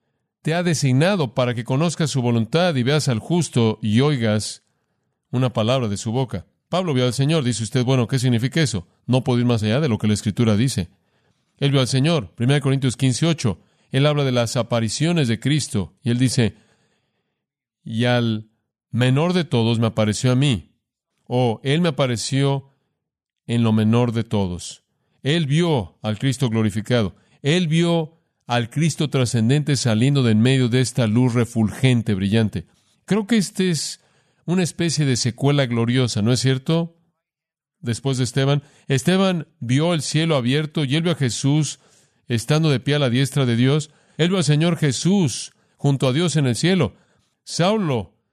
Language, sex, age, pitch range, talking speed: Spanish, male, 50-69, 115-155 Hz, 175 wpm